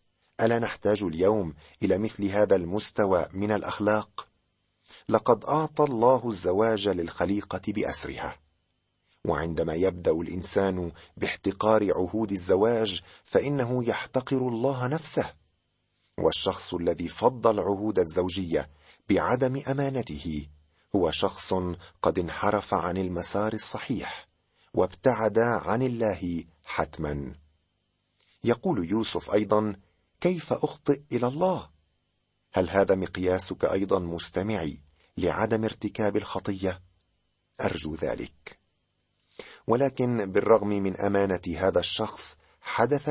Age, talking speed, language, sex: 40-59, 95 wpm, Arabic, male